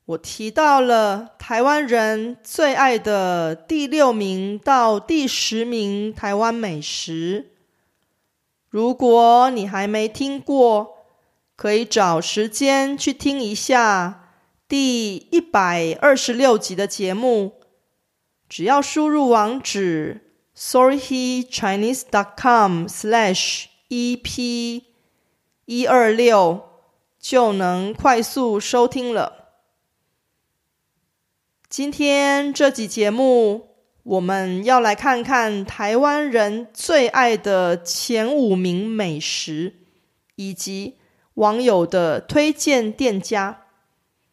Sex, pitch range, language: female, 195-260 Hz, Korean